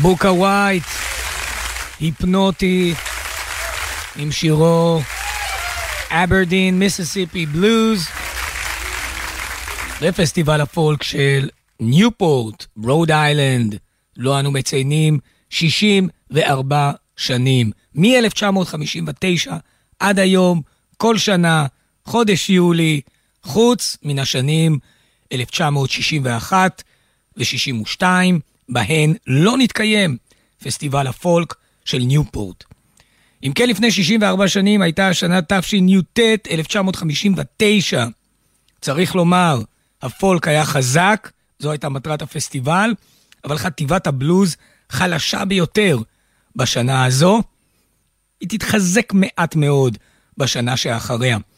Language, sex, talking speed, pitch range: Hebrew, male, 80 wpm, 130-190 Hz